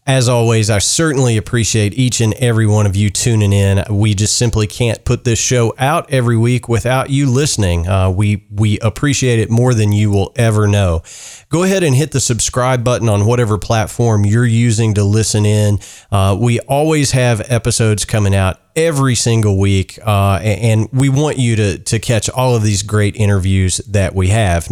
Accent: American